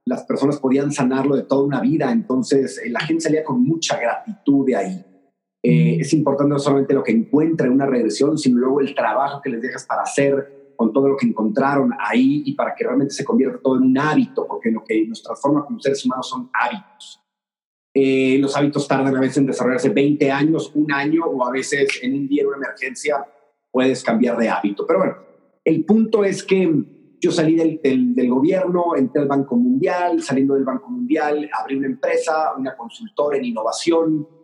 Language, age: Spanish, 40-59